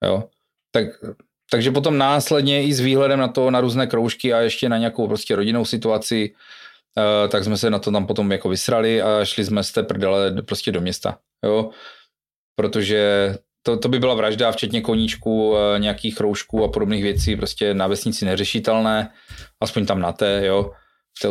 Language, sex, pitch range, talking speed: Czech, male, 105-130 Hz, 175 wpm